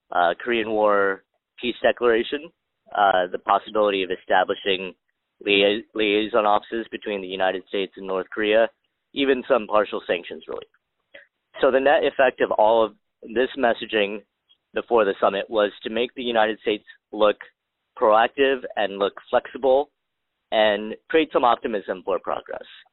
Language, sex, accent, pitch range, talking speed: English, male, American, 100-130 Hz, 140 wpm